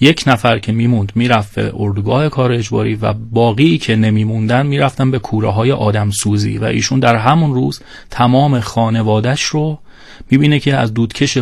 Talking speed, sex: 165 wpm, male